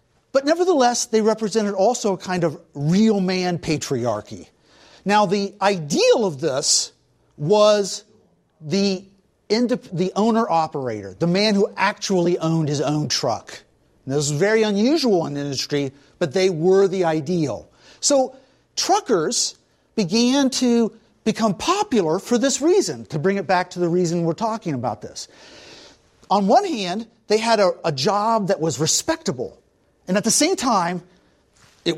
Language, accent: English, American